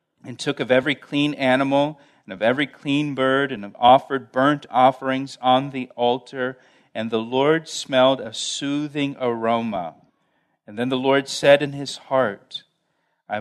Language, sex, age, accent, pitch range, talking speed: English, male, 40-59, American, 120-145 Hz, 150 wpm